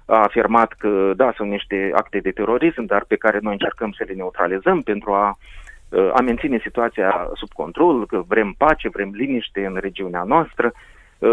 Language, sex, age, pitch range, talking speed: Romanian, male, 30-49, 100-145 Hz, 170 wpm